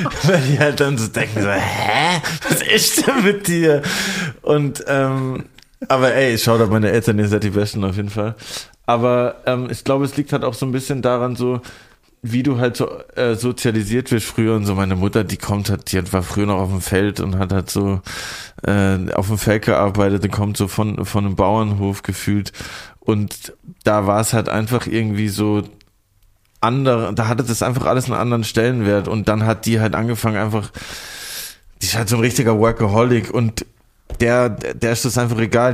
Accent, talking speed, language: German, 200 wpm, German